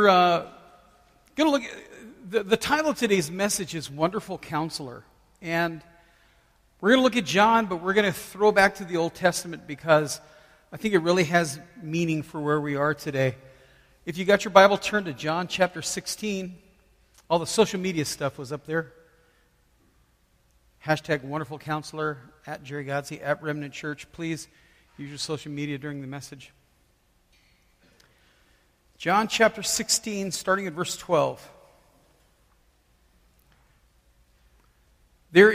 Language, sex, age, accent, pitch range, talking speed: English, male, 50-69, American, 150-200 Hz, 145 wpm